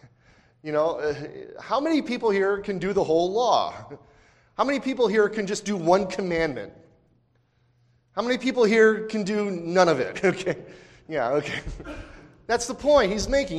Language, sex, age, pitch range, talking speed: English, male, 30-49, 120-175 Hz, 170 wpm